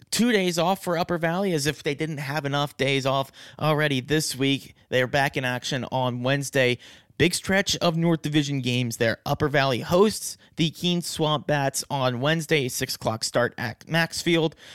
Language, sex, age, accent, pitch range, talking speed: English, male, 30-49, American, 120-145 Hz, 185 wpm